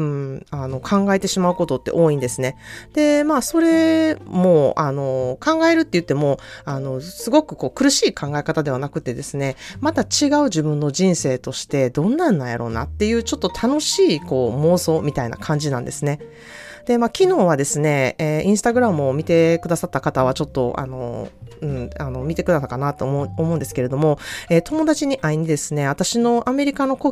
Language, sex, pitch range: Japanese, female, 145-235 Hz